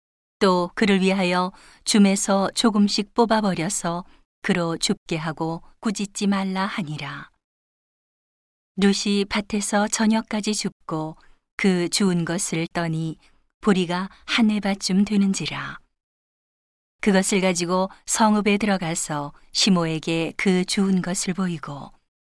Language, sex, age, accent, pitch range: Korean, female, 40-59, native, 170-205 Hz